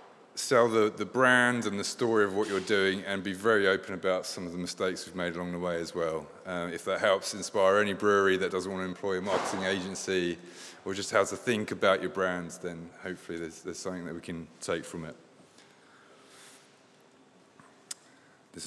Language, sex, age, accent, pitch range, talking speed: English, male, 20-39, British, 90-105 Hz, 200 wpm